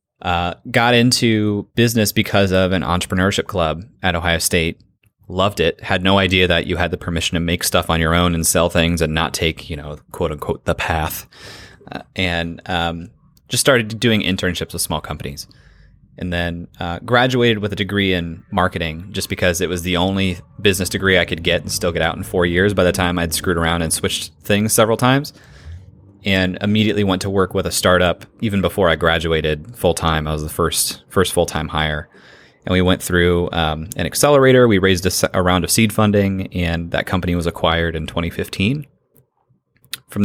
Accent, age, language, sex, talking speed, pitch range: American, 20-39, English, male, 195 wpm, 85-100 Hz